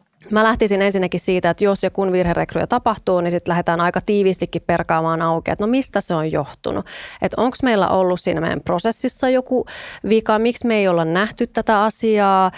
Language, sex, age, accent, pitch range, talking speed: Finnish, female, 30-49, native, 175-220 Hz, 180 wpm